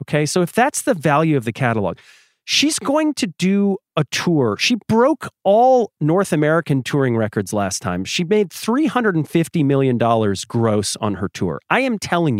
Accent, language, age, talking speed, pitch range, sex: American, English, 40-59, 170 wpm, 140-200 Hz, male